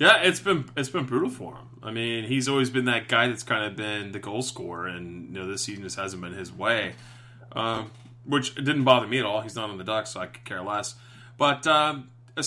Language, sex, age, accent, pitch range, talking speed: English, male, 30-49, American, 110-130 Hz, 250 wpm